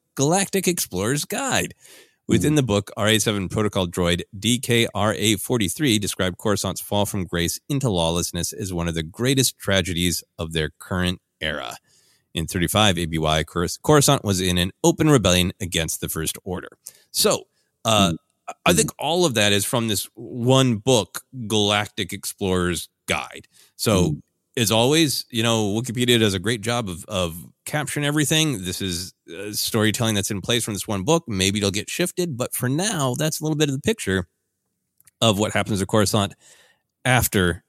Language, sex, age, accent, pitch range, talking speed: English, male, 30-49, American, 90-135 Hz, 160 wpm